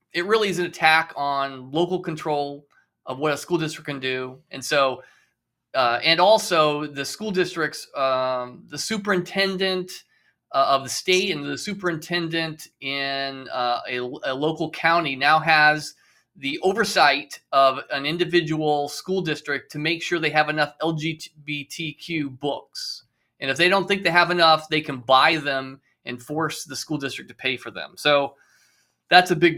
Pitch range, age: 140-175 Hz, 20-39